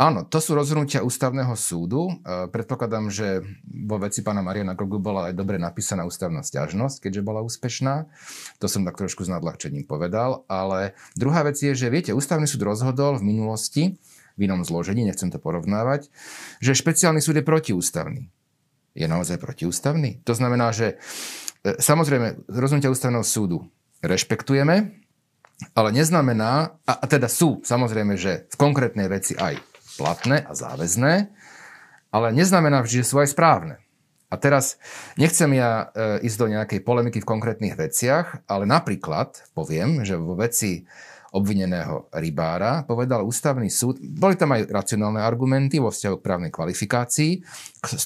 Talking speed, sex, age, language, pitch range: 145 wpm, male, 40-59, Slovak, 105-145 Hz